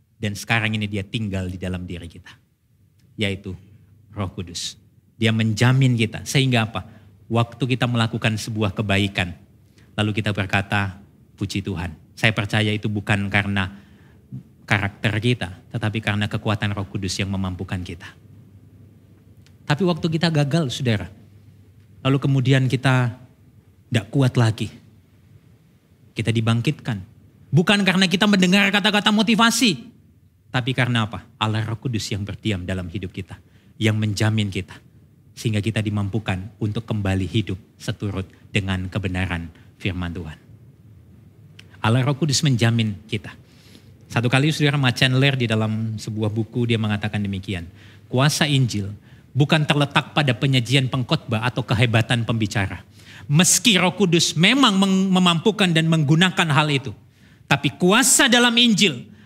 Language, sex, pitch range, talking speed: Indonesian, male, 105-135 Hz, 125 wpm